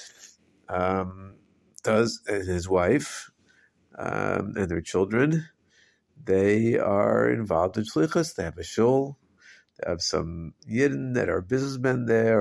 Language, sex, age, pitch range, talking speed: English, male, 50-69, 95-130 Hz, 125 wpm